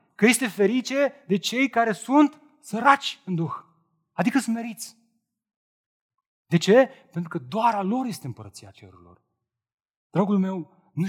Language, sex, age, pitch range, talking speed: Romanian, male, 30-49, 120-180 Hz, 135 wpm